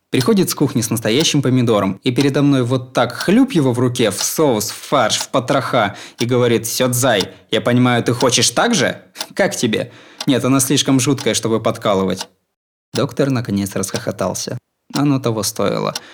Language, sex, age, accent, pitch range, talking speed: Russian, male, 20-39, native, 110-145 Hz, 165 wpm